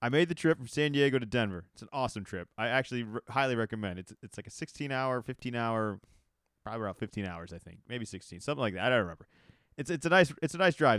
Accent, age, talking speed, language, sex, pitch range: American, 30-49, 260 wpm, English, male, 110-140 Hz